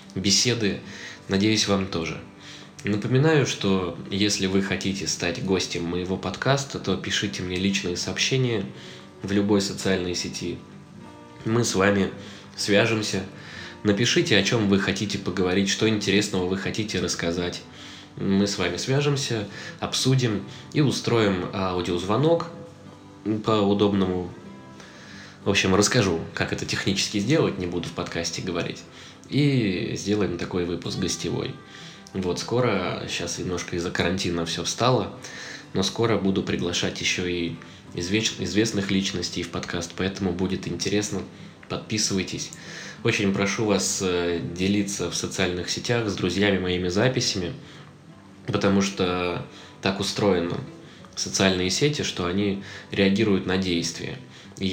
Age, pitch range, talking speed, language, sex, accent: 20-39, 90-105 Hz, 120 wpm, Russian, male, native